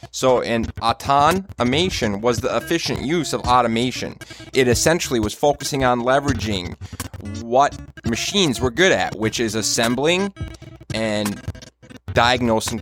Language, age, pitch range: English, 20-39, 105-125 Hz